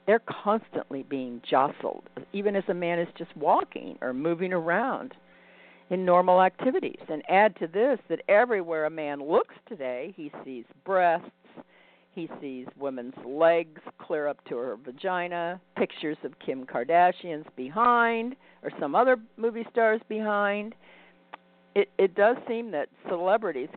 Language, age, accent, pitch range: English, 50-69, American, 135-210 Hz